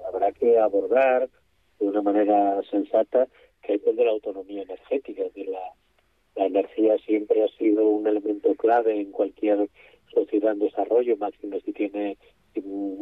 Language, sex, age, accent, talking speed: Spanish, male, 40-59, Spanish, 160 wpm